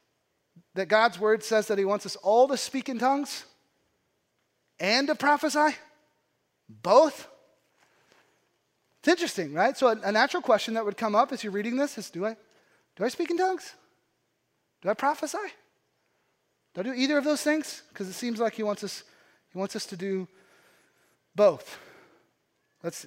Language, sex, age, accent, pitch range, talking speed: English, male, 30-49, American, 205-280 Hz, 170 wpm